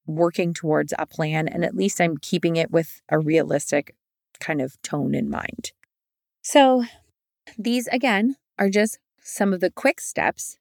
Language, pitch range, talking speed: English, 160-210 Hz, 160 wpm